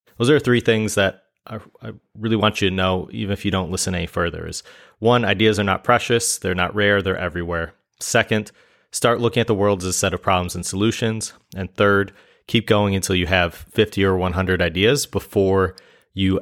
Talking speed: 200 wpm